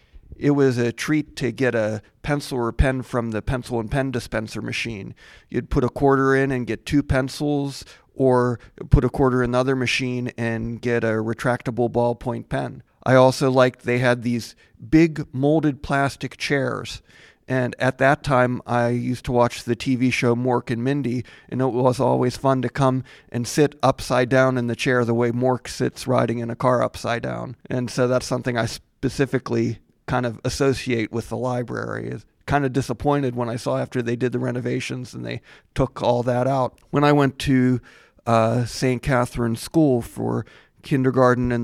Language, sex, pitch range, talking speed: English, male, 115-130 Hz, 185 wpm